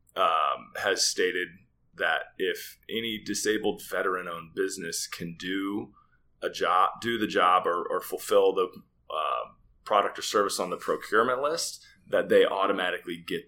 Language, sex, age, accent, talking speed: English, male, 20-39, American, 145 wpm